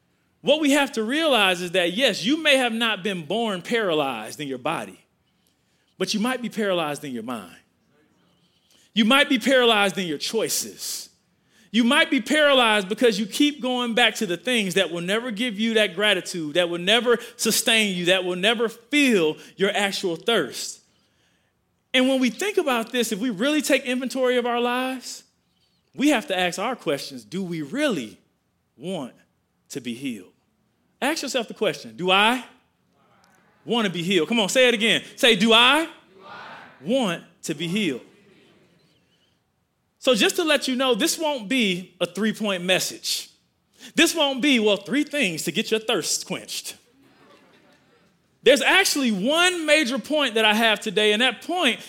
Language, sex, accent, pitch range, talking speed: English, male, American, 195-265 Hz, 170 wpm